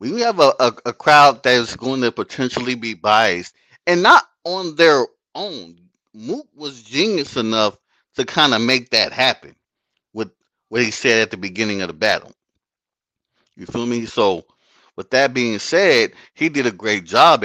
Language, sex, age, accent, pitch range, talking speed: English, male, 30-49, American, 115-175 Hz, 175 wpm